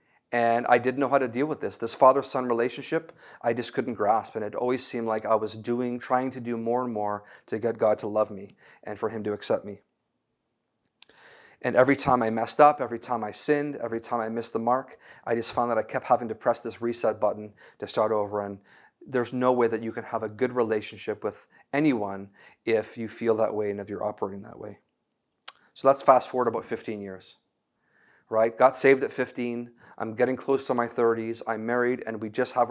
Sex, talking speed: male, 220 wpm